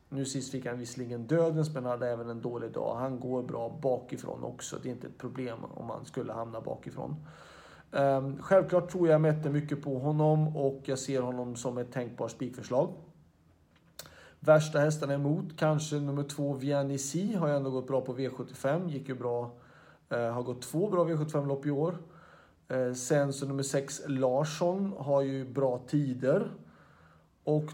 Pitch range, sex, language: 125-155 Hz, male, Swedish